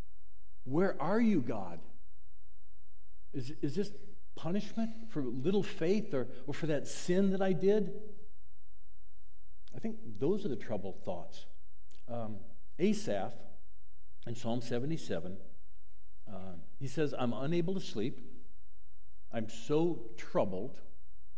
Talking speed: 115 wpm